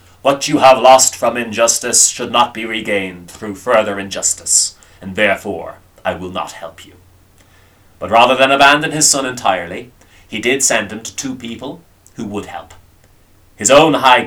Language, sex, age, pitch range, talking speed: English, male, 30-49, 90-115 Hz, 170 wpm